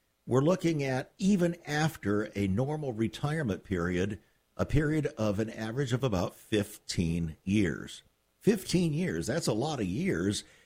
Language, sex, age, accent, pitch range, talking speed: English, male, 50-69, American, 95-140 Hz, 140 wpm